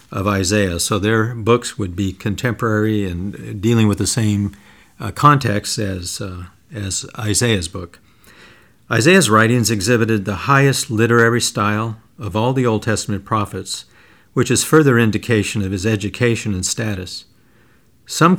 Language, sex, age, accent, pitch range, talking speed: English, male, 50-69, American, 105-125 Hz, 140 wpm